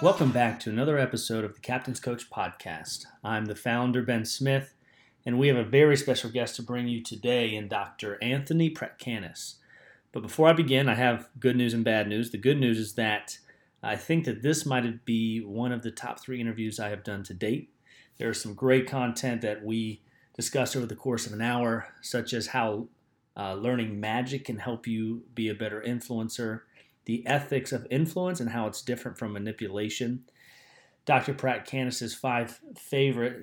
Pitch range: 110-130 Hz